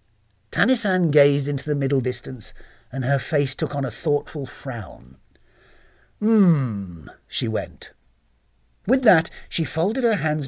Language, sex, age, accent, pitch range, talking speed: English, male, 50-69, British, 115-185 Hz, 130 wpm